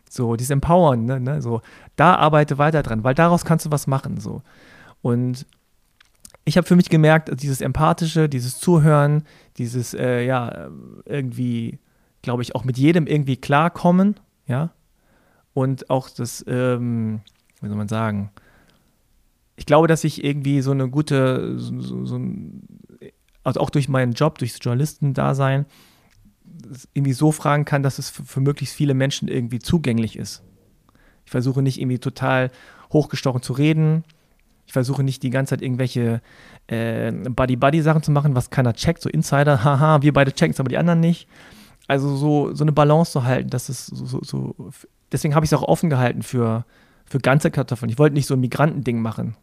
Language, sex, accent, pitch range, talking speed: German, male, German, 125-150 Hz, 175 wpm